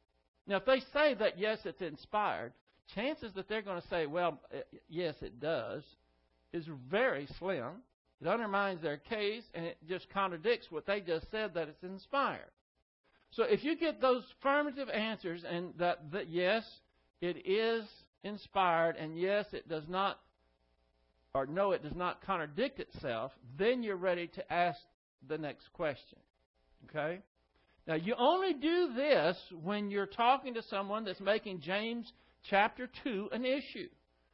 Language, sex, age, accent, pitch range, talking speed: English, male, 60-79, American, 160-215 Hz, 155 wpm